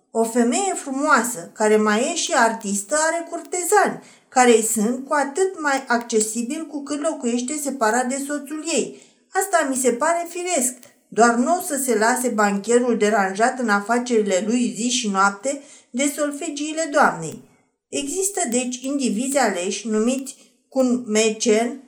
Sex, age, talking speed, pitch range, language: female, 50-69, 140 wpm, 230-300 Hz, Romanian